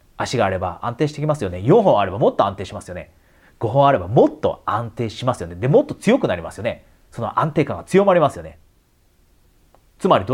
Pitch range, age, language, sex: 90-150 Hz, 30-49, Japanese, male